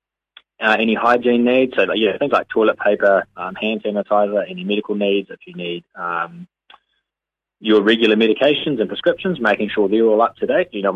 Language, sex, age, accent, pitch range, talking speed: English, male, 20-39, Australian, 90-120 Hz, 185 wpm